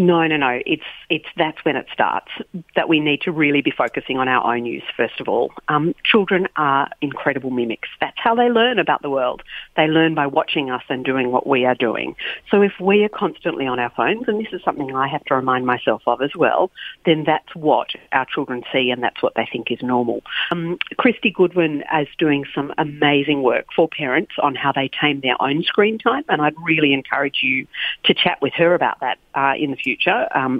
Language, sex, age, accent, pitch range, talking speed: English, female, 40-59, Australian, 140-190 Hz, 220 wpm